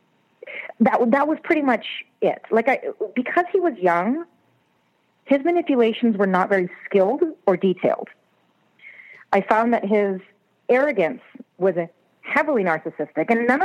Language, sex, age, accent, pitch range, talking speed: English, female, 30-49, American, 175-230 Hz, 135 wpm